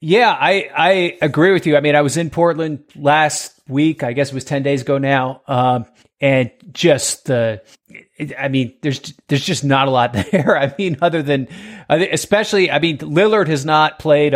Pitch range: 135-160 Hz